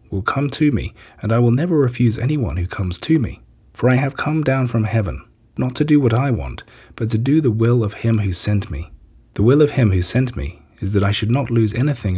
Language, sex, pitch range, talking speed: English, male, 90-120 Hz, 250 wpm